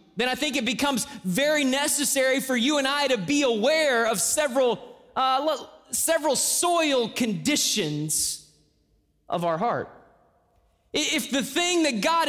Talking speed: 130 wpm